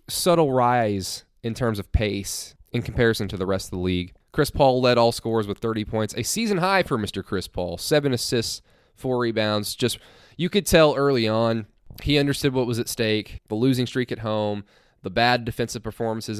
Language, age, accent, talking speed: English, 20-39, American, 200 wpm